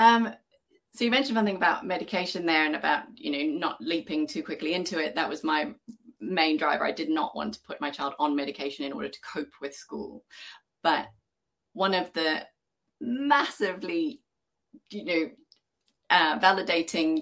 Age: 30-49